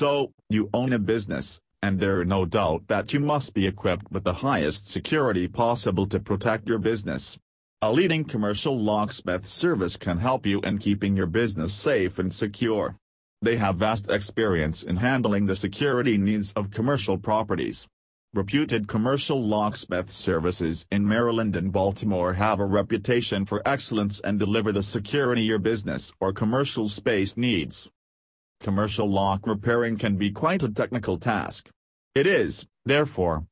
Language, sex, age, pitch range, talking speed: English, male, 40-59, 95-115 Hz, 155 wpm